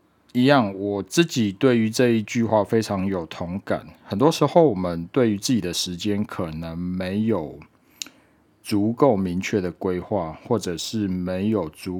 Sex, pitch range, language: male, 90-115 Hz, Chinese